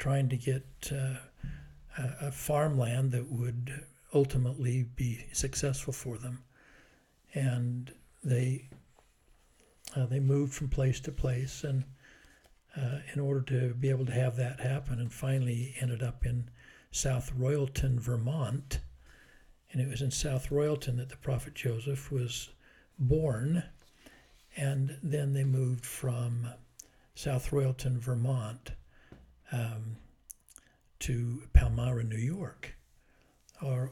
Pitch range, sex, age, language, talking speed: 125-140 Hz, male, 60-79, English, 120 wpm